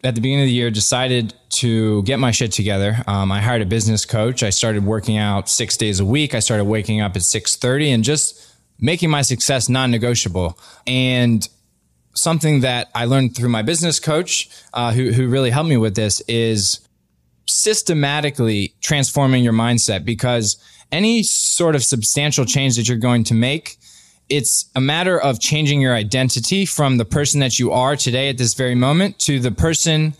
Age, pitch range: 20-39, 115-145 Hz